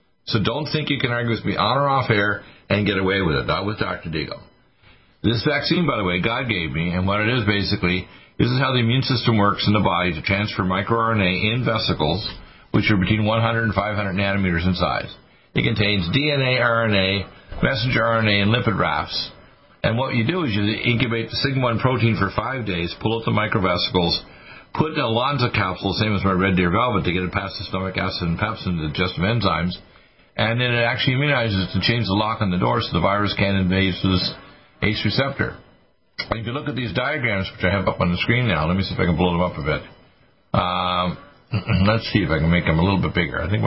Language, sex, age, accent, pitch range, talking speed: English, male, 50-69, American, 95-115 Hz, 230 wpm